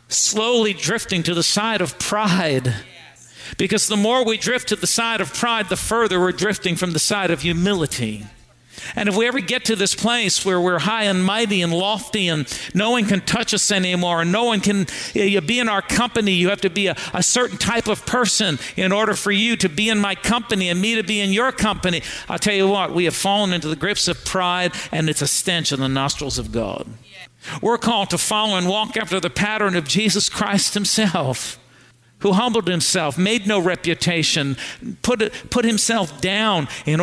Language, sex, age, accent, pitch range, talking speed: English, male, 50-69, American, 160-215 Hz, 205 wpm